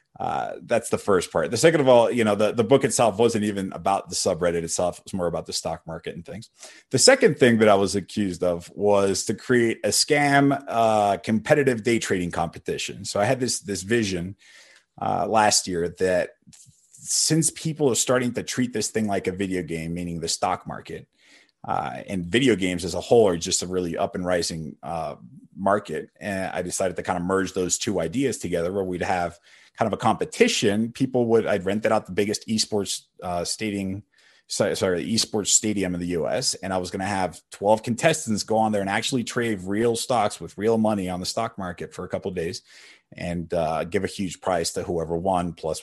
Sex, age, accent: male, 30-49, American